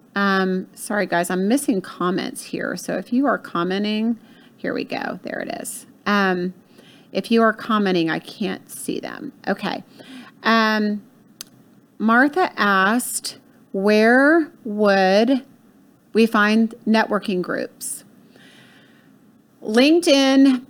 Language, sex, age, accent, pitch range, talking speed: English, female, 30-49, American, 205-250 Hz, 110 wpm